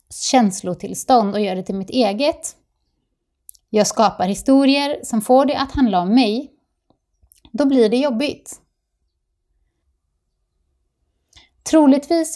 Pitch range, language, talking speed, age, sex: 195-275 Hz, Swedish, 105 wpm, 20-39, female